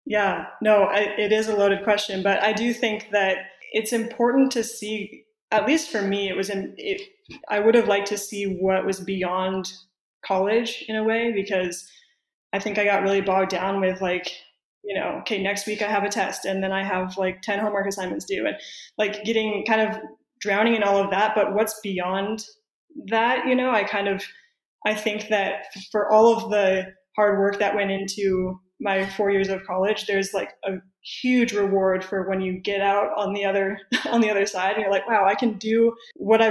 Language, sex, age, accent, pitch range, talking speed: English, female, 20-39, American, 190-220 Hz, 210 wpm